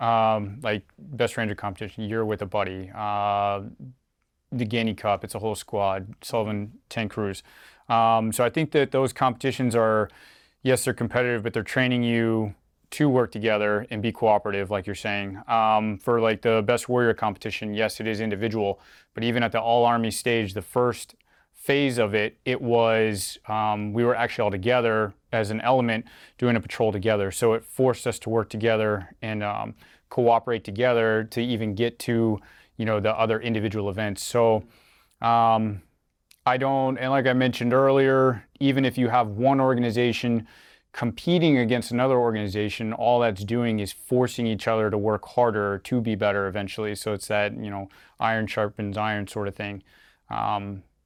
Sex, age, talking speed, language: male, 30-49, 175 wpm, English